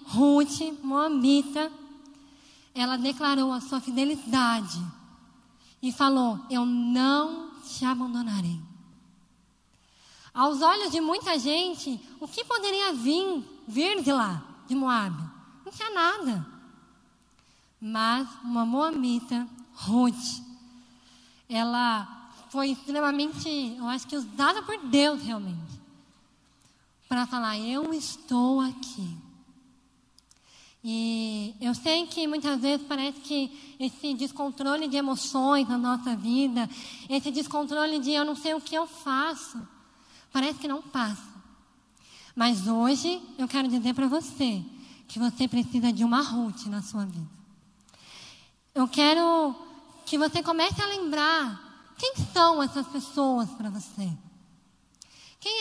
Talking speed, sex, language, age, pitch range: 115 wpm, female, Portuguese, 10-29, 235-295 Hz